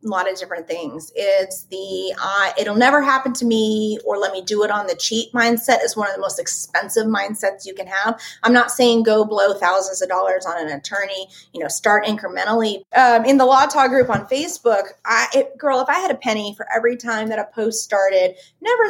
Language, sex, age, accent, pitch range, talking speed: English, female, 30-49, American, 195-255 Hz, 225 wpm